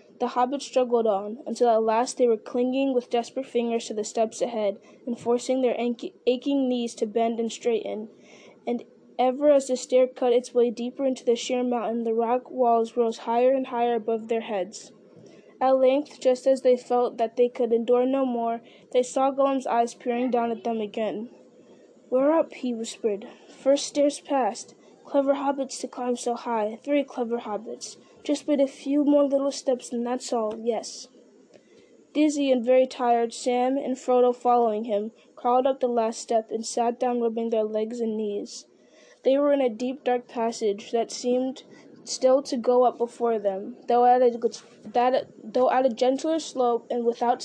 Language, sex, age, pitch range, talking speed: English, female, 20-39, 230-260 Hz, 180 wpm